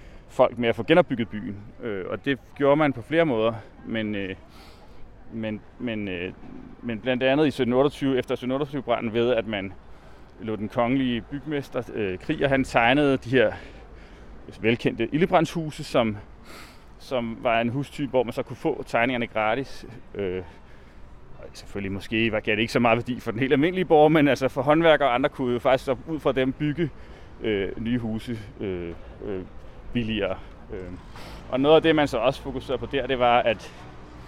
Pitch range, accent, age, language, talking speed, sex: 95-135 Hz, native, 30-49, Danish, 170 wpm, male